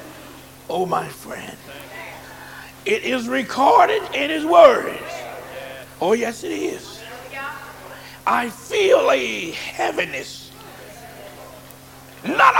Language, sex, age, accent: English, male, 60-79, American